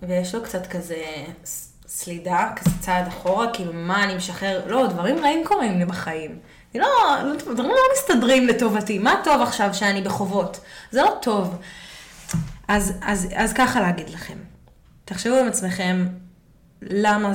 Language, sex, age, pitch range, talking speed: Hebrew, female, 20-39, 175-220 Hz, 140 wpm